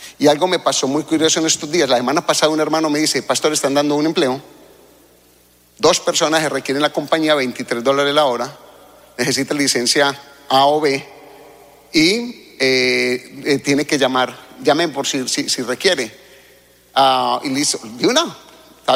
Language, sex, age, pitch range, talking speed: English, male, 40-59, 135-165 Hz, 175 wpm